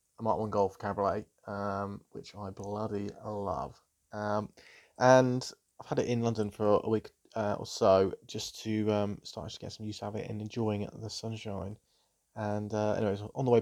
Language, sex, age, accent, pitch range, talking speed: English, male, 20-39, British, 100-110 Hz, 195 wpm